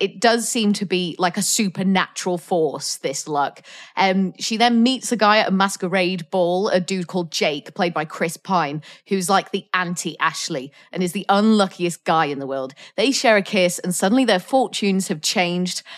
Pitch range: 180-220 Hz